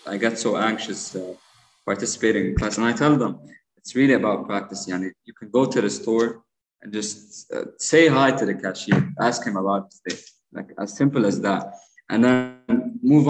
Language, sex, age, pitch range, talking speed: English, male, 20-39, 100-120 Hz, 190 wpm